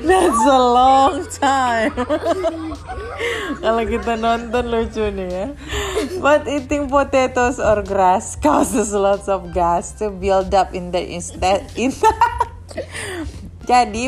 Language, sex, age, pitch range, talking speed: Indonesian, female, 20-39, 180-265 Hz, 115 wpm